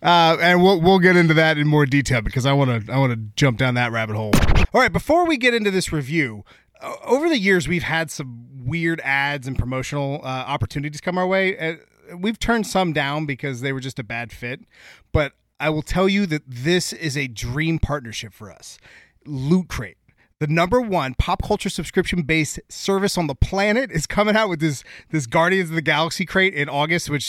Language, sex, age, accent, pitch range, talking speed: English, male, 30-49, American, 145-195 Hz, 210 wpm